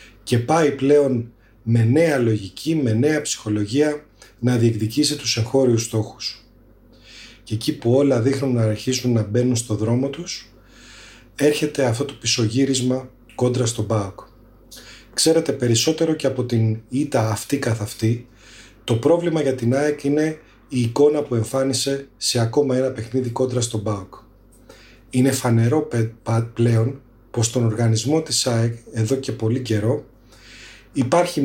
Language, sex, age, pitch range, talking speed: Greek, male, 30-49, 115-135 Hz, 145 wpm